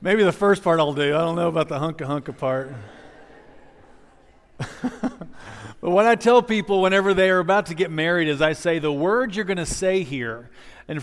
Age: 40-59